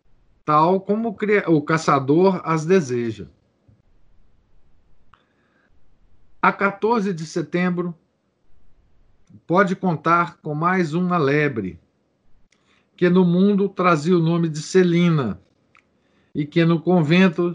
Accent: Brazilian